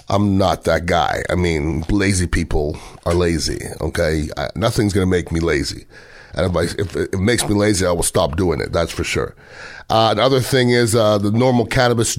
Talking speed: 190 wpm